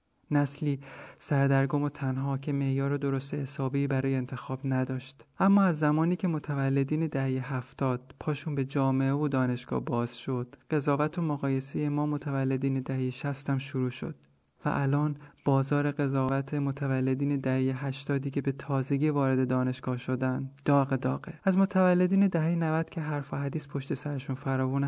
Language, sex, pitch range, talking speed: Persian, male, 130-150 Hz, 145 wpm